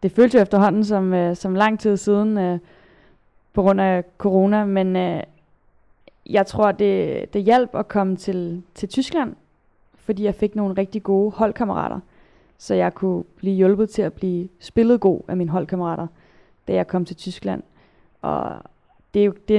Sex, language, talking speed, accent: female, Danish, 160 wpm, native